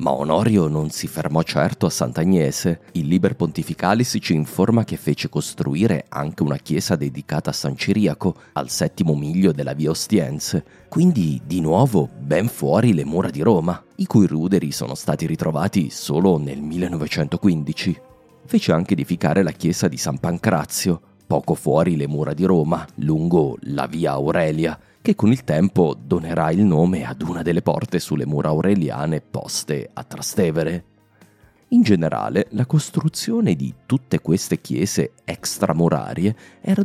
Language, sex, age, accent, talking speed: English, male, 30-49, Italian, 150 wpm